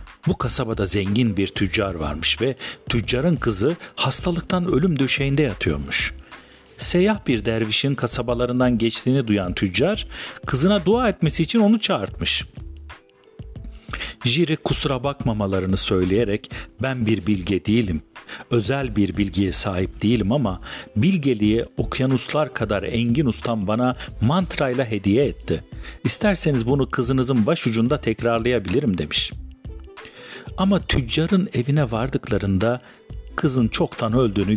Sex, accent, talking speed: male, native, 110 wpm